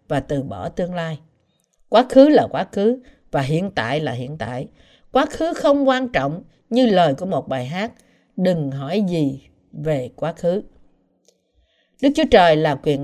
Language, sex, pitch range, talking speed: Vietnamese, female, 155-255 Hz, 175 wpm